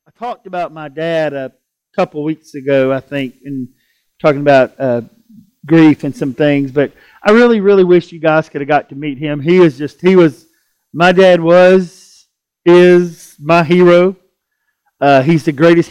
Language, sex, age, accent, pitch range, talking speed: English, male, 50-69, American, 155-190 Hz, 175 wpm